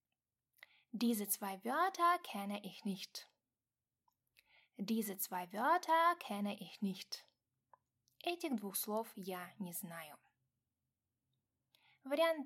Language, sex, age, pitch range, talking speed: Russian, female, 10-29, 185-275 Hz, 70 wpm